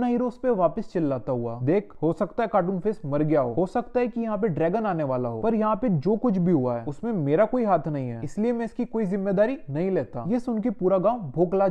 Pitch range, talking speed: 165-220 Hz, 255 wpm